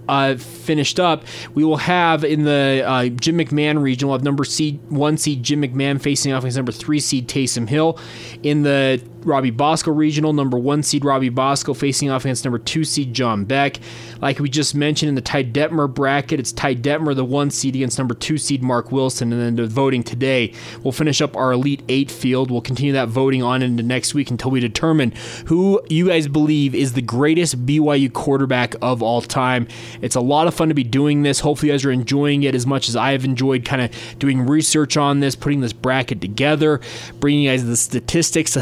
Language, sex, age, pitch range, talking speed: English, male, 20-39, 125-145 Hz, 215 wpm